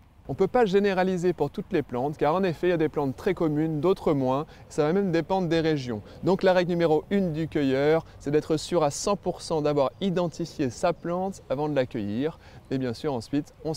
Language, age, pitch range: French, 20-39, 115-155 Hz